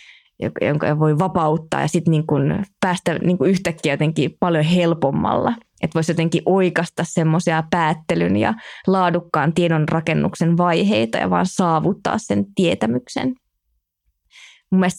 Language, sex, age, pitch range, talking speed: Finnish, female, 20-39, 160-190 Hz, 115 wpm